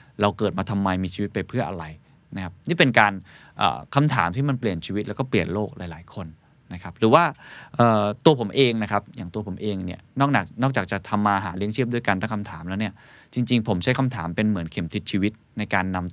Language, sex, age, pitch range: Thai, male, 20-39, 95-130 Hz